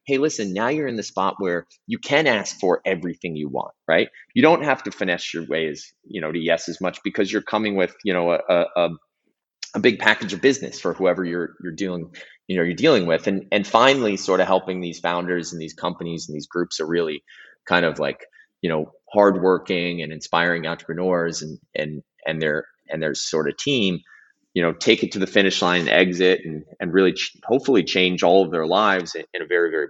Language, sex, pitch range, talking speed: English, male, 85-100 Hz, 220 wpm